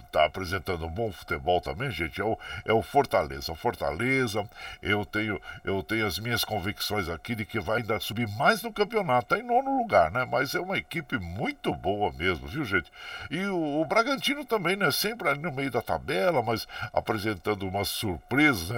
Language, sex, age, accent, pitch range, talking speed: Portuguese, male, 60-79, Brazilian, 85-120 Hz, 190 wpm